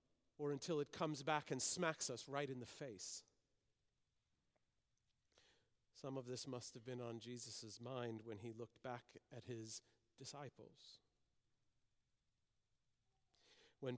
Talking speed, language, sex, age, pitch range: 125 wpm, English, male, 40-59, 125-165 Hz